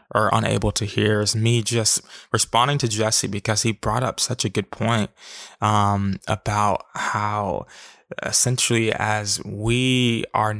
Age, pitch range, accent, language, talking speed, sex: 20-39, 105-115 Hz, American, English, 140 wpm, male